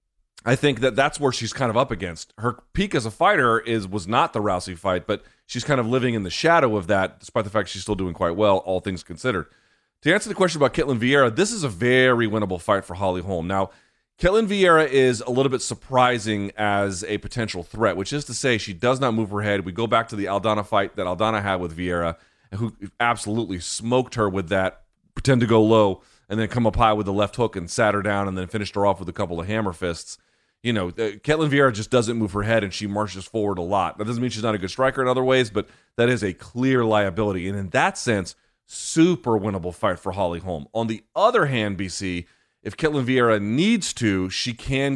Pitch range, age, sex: 100-125 Hz, 30-49, male